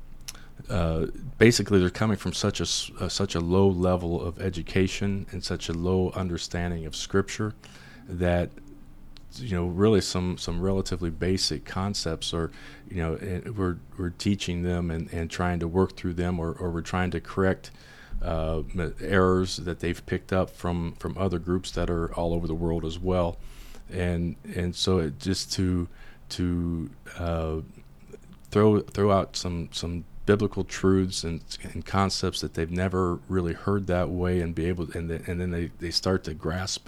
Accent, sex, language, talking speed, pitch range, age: American, male, English, 175 wpm, 85-95 Hz, 40-59